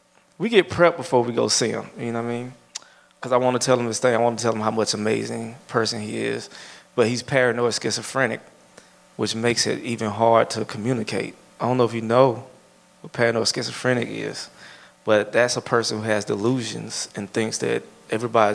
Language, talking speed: English, 205 wpm